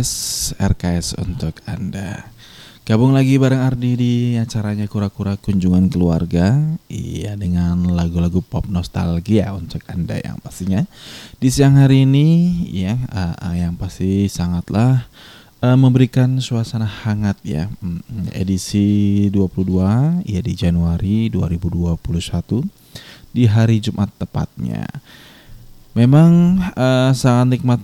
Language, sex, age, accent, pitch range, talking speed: Indonesian, male, 20-39, native, 95-120 Hz, 110 wpm